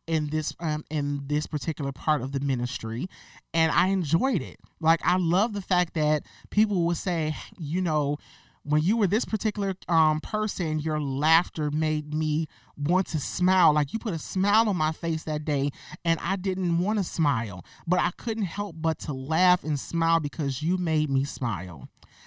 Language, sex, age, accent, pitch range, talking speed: English, male, 30-49, American, 145-190 Hz, 185 wpm